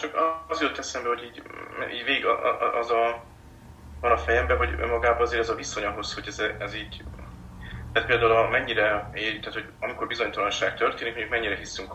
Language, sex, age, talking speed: Hungarian, male, 30-49, 185 wpm